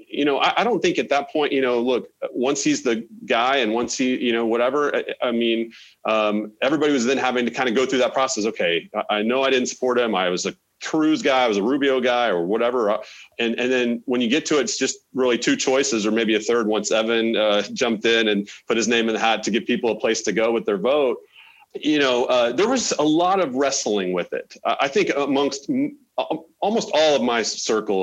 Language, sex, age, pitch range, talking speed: English, male, 40-59, 110-150 Hz, 250 wpm